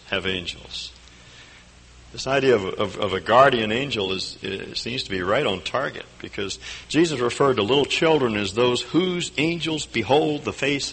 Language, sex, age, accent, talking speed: English, male, 60-79, American, 170 wpm